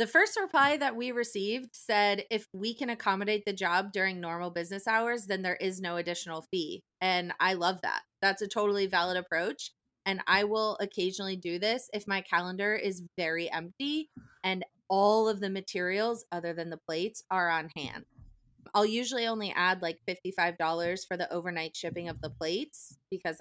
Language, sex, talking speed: English, female, 180 wpm